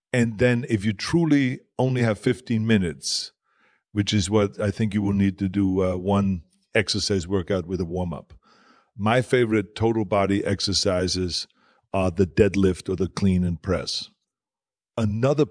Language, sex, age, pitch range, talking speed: English, male, 50-69, 95-115 Hz, 155 wpm